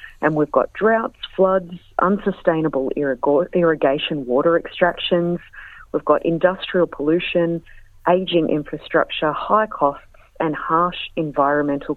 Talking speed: 100 wpm